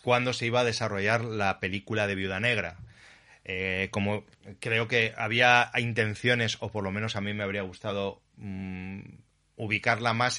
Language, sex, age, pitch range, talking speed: Spanish, male, 30-49, 95-115 Hz, 160 wpm